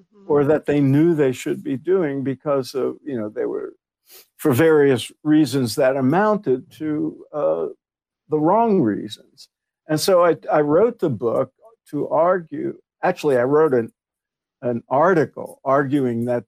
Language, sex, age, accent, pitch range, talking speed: English, male, 60-79, American, 130-160 Hz, 150 wpm